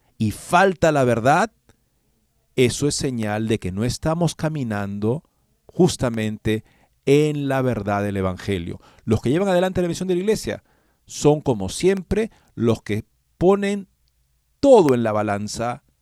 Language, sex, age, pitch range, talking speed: Spanish, male, 50-69, 110-150 Hz, 140 wpm